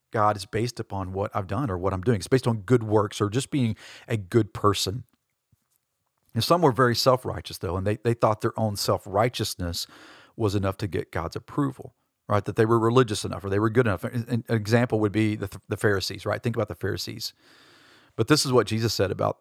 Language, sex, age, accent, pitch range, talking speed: English, male, 40-59, American, 100-120 Hz, 220 wpm